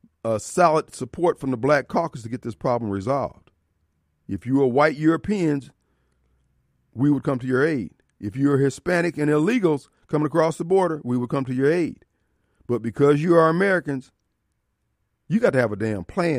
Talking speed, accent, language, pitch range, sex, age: 185 wpm, American, English, 120-190 Hz, male, 50-69